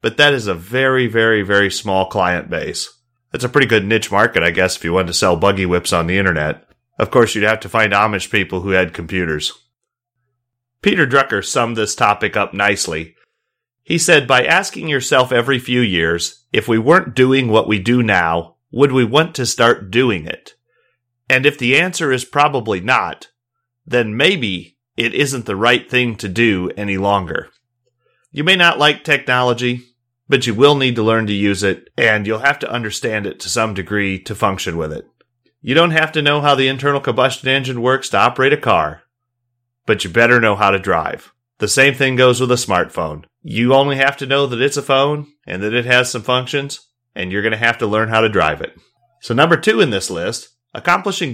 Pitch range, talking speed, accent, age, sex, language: 105-135 Hz, 205 wpm, American, 30-49, male, English